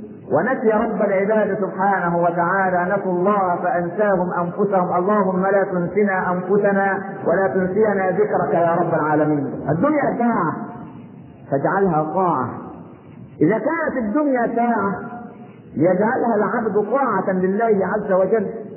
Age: 50-69